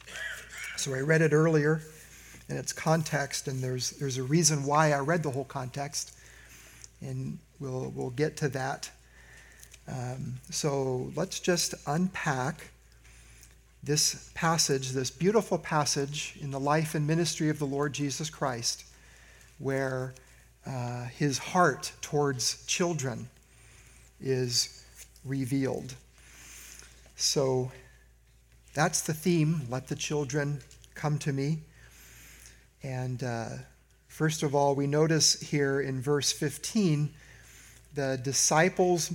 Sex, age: male, 40-59